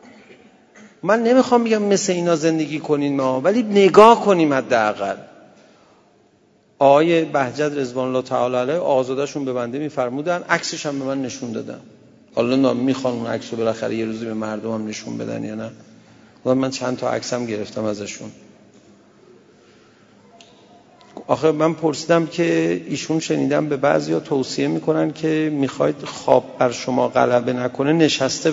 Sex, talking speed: male, 145 wpm